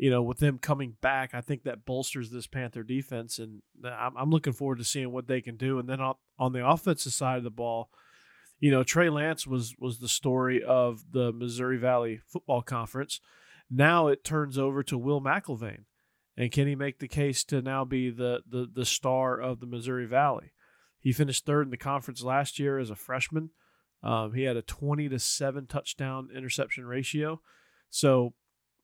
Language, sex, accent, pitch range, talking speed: English, male, American, 120-140 Hz, 195 wpm